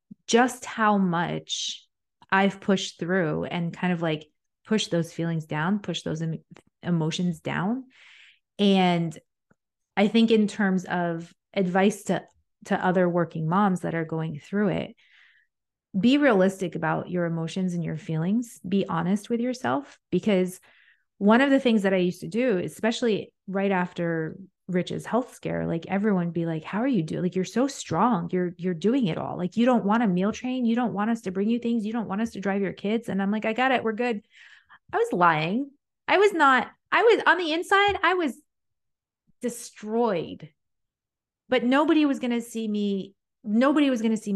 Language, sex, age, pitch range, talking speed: English, female, 30-49, 180-245 Hz, 185 wpm